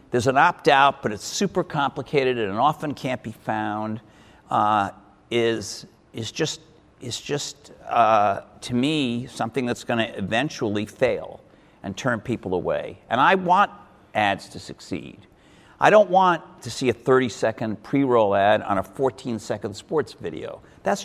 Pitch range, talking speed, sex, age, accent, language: 110-145 Hz, 150 wpm, male, 60-79, American, English